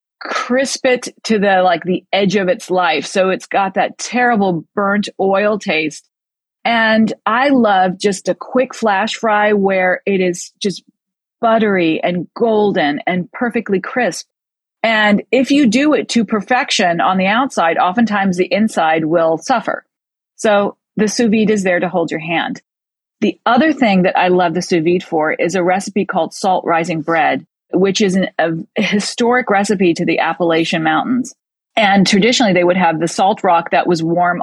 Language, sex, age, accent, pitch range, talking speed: English, female, 40-59, American, 180-225 Hz, 170 wpm